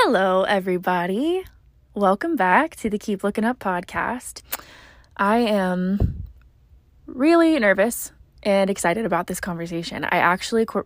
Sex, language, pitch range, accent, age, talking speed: female, English, 175-220 Hz, American, 20-39, 120 wpm